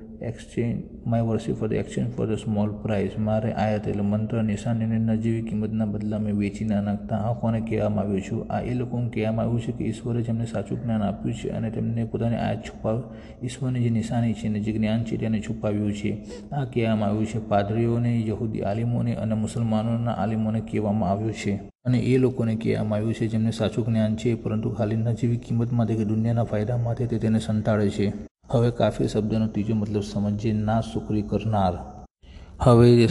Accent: native